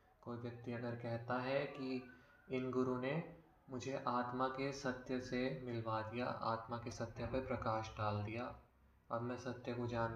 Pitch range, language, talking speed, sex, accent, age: 115-135 Hz, Hindi, 165 wpm, male, native, 20-39